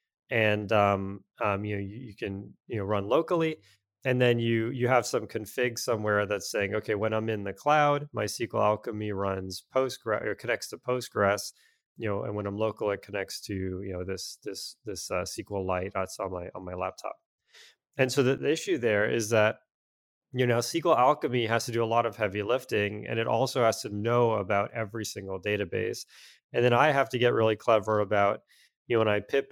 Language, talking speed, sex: English, 210 wpm, male